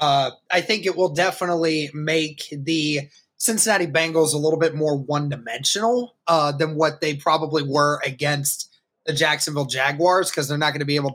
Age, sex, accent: 20-39, male, American